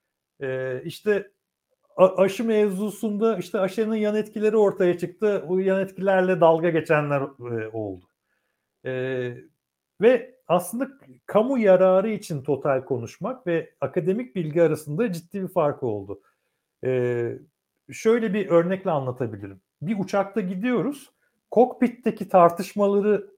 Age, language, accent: 60-79, Turkish, native